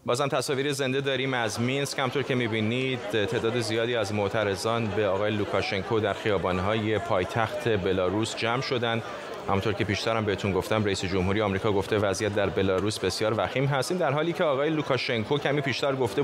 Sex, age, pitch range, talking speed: male, 30-49, 105-145 Hz, 170 wpm